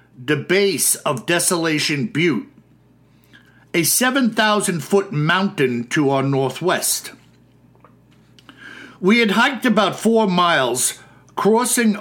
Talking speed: 95 wpm